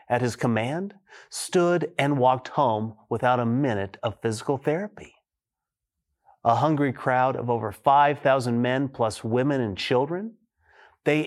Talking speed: 135 wpm